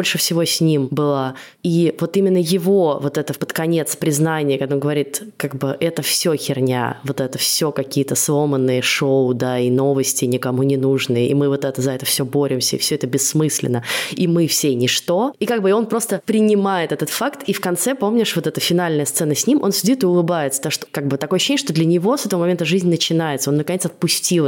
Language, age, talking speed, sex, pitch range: Russian, 20-39, 220 wpm, female, 135-175 Hz